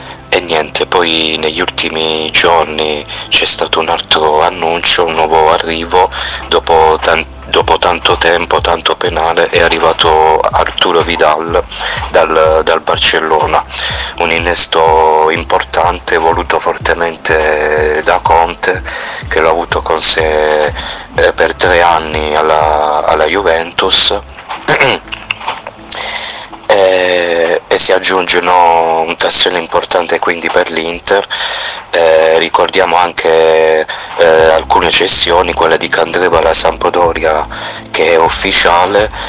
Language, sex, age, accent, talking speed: Italian, male, 30-49, native, 100 wpm